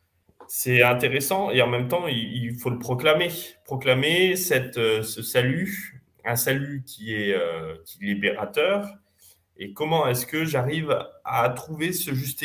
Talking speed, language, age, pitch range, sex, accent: 145 wpm, French, 20-39, 110-145 Hz, male, French